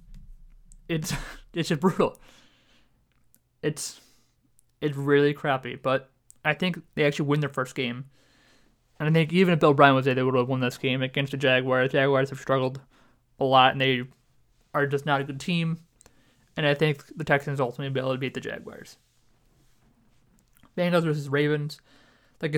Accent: American